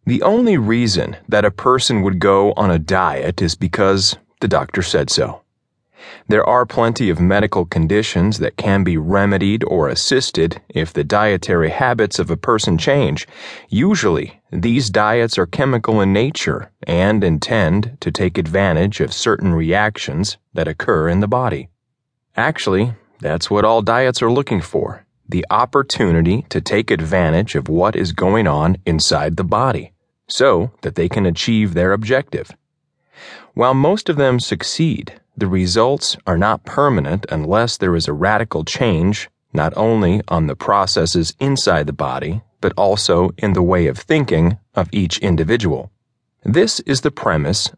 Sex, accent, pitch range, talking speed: male, American, 90-120 Hz, 155 wpm